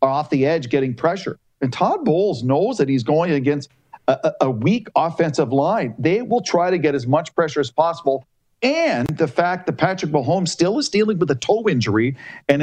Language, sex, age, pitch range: English, male, 50-69, 135-175 Hz